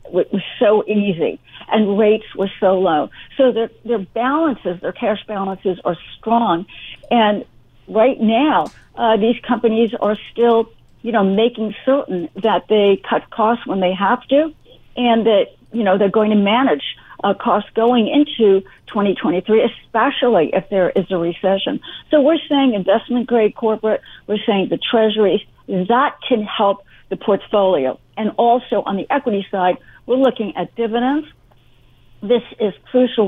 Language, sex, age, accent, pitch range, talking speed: English, female, 60-79, American, 200-245 Hz, 150 wpm